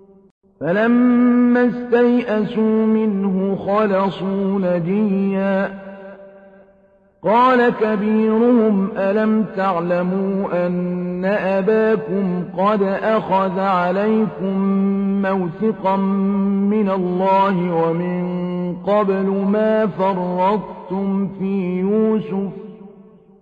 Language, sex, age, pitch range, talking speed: Arabic, male, 50-69, 195-220 Hz, 60 wpm